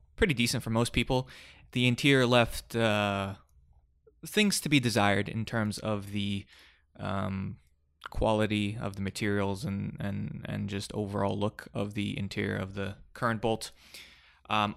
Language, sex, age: English, male, 20-39